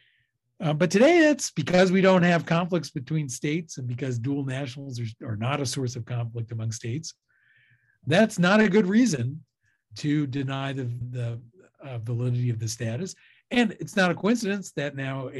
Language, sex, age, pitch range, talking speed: English, male, 50-69, 120-155 Hz, 175 wpm